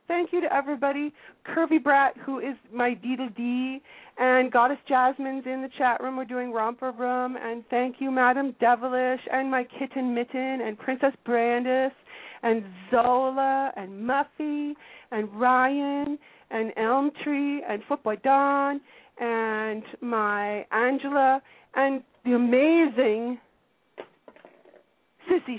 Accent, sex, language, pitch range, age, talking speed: American, female, English, 220-265 Hz, 40-59, 125 wpm